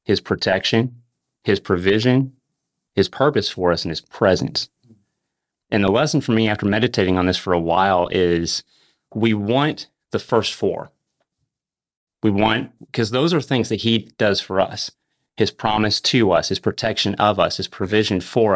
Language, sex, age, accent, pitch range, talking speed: English, male, 30-49, American, 95-125 Hz, 165 wpm